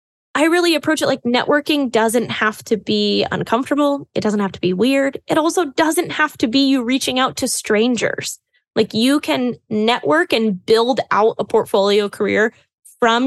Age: 10-29